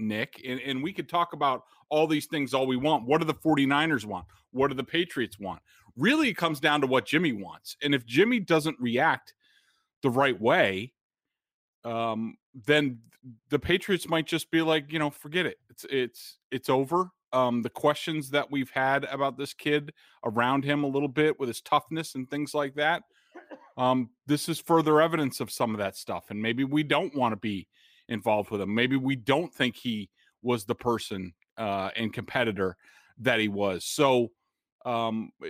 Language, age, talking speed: English, 30-49, 190 wpm